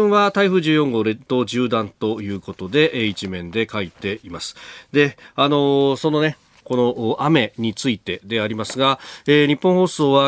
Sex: male